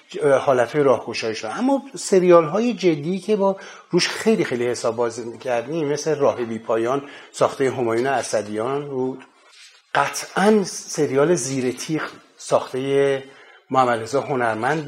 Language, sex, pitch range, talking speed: Persian, male, 120-155 Hz, 110 wpm